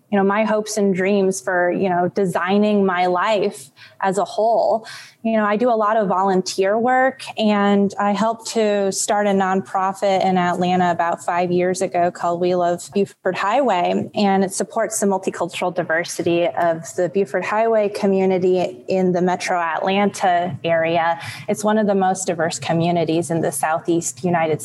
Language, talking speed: English, 170 wpm